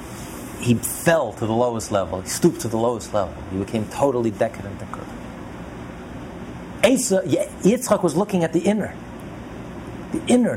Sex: male